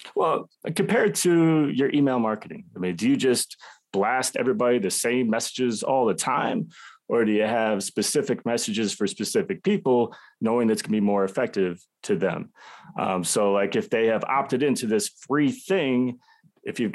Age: 30-49